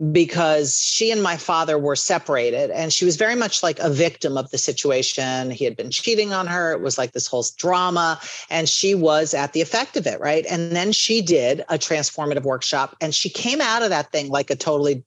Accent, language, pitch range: American, English, 145-175 Hz